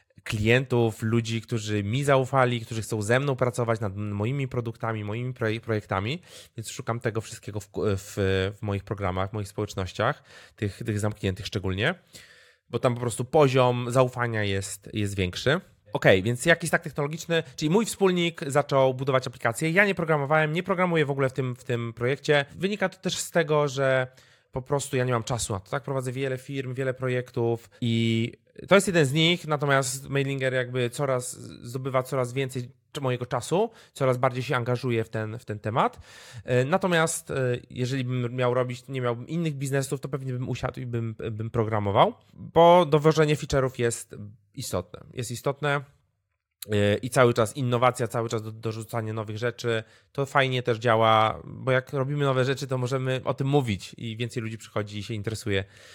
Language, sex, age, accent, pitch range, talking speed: Polish, male, 20-39, native, 115-140 Hz, 165 wpm